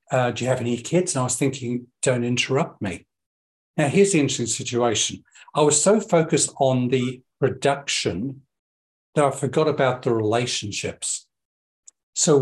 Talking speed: 155 wpm